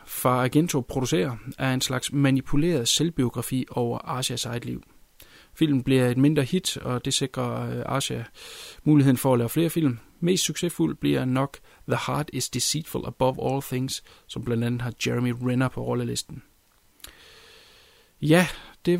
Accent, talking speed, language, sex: native, 150 wpm, Danish, male